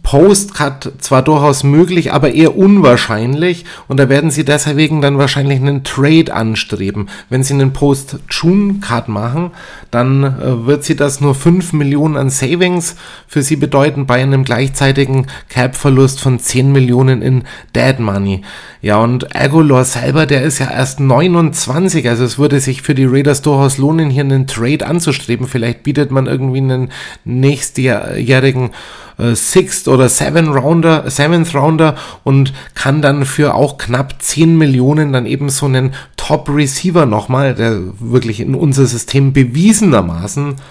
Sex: male